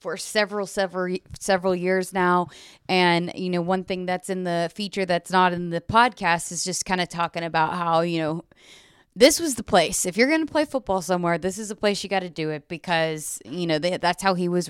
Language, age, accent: English, 20-39, American